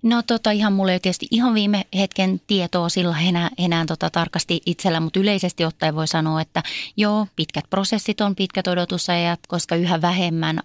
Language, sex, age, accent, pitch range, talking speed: Finnish, female, 30-49, native, 165-190 Hz, 170 wpm